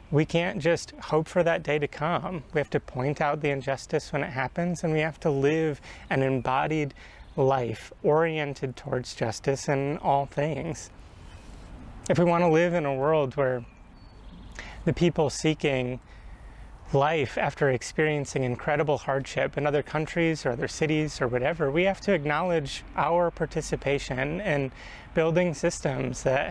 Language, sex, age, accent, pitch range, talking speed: English, male, 30-49, American, 125-165 Hz, 155 wpm